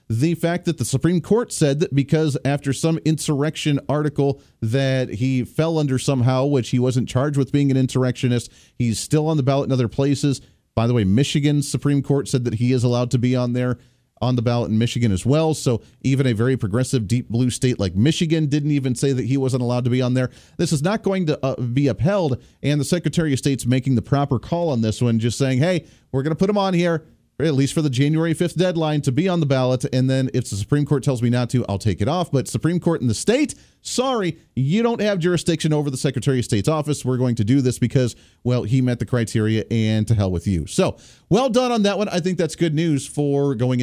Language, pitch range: English, 120-155 Hz